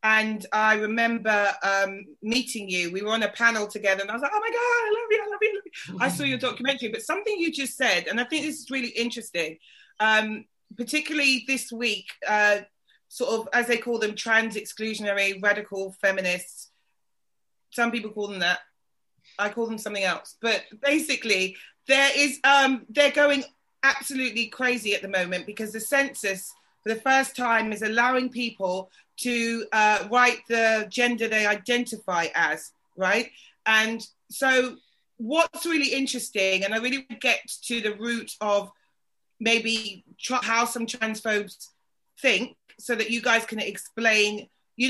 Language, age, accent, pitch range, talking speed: English, 30-49, British, 210-260 Hz, 170 wpm